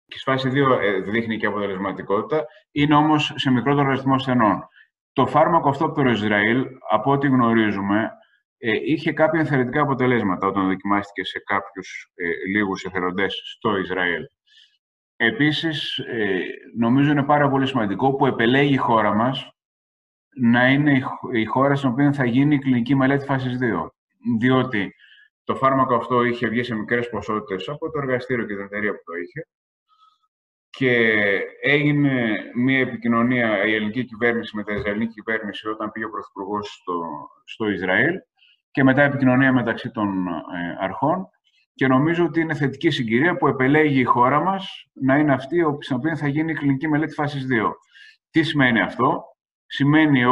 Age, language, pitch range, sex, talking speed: 20-39, Greek, 110-145 Hz, male, 155 wpm